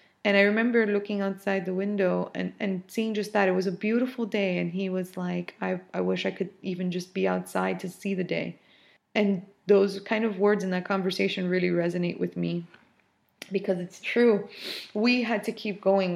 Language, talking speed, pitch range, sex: English, 200 wpm, 175-195 Hz, female